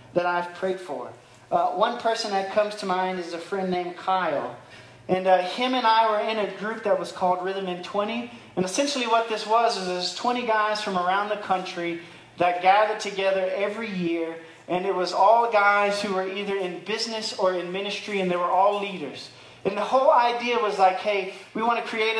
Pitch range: 180-220 Hz